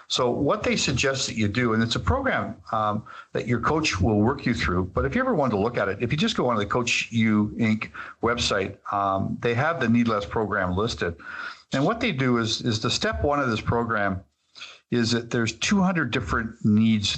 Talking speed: 215 wpm